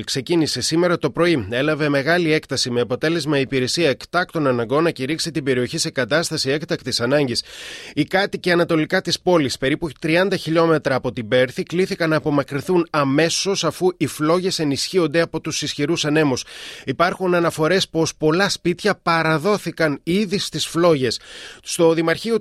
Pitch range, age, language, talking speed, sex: 140-175 Hz, 30-49, Greek, 145 wpm, male